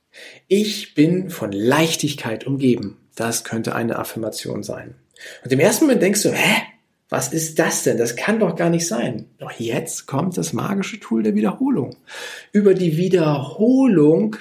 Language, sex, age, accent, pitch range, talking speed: German, male, 40-59, German, 130-205 Hz, 160 wpm